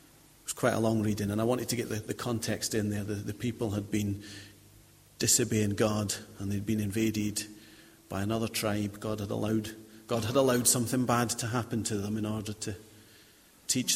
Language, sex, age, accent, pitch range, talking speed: English, male, 40-59, British, 105-125 Hz, 190 wpm